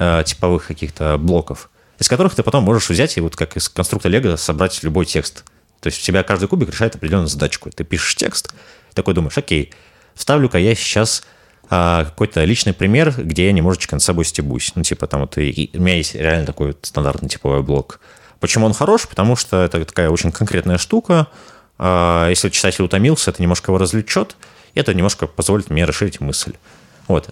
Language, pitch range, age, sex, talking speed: Russian, 75-100 Hz, 30-49, male, 170 wpm